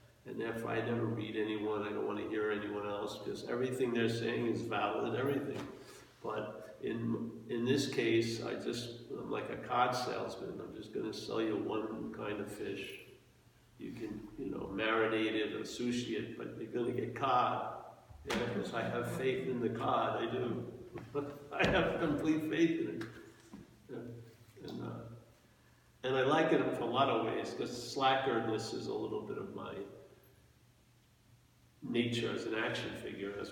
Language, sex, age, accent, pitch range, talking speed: English, male, 50-69, American, 110-130 Hz, 175 wpm